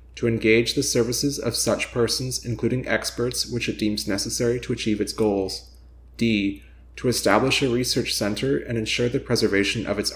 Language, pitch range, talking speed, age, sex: English, 100-120 Hz, 170 wpm, 30-49, male